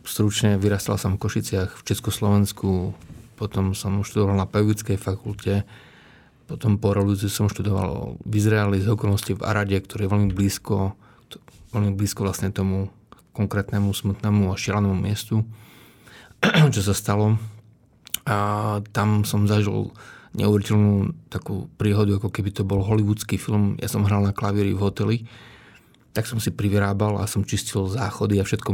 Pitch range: 100-110 Hz